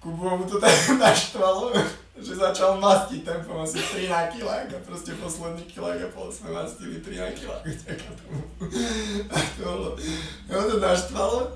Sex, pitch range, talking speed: male, 125-180 Hz, 150 wpm